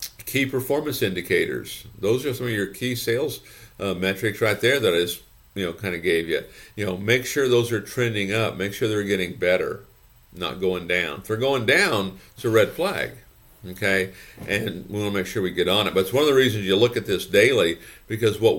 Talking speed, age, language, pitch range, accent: 230 wpm, 50-69, English, 95-125 Hz, American